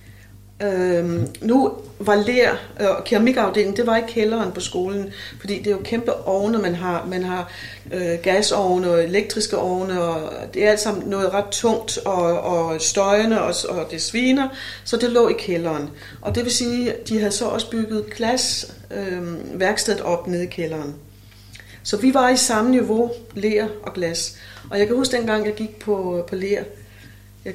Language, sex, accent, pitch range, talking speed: Danish, female, native, 165-225 Hz, 175 wpm